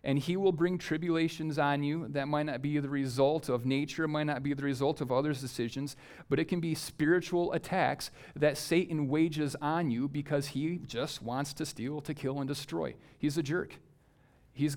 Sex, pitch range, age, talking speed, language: male, 140-165 Hz, 40-59, 195 wpm, English